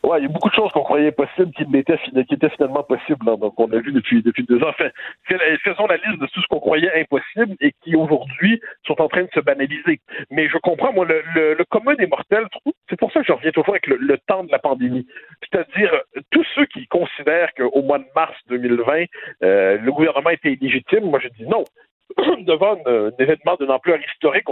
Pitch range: 140-215 Hz